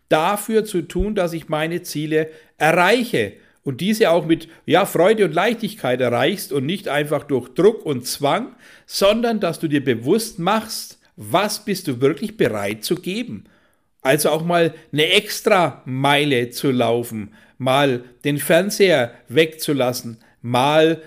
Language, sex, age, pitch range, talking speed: German, male, 60-79, 145-200 Hz, 140 wpm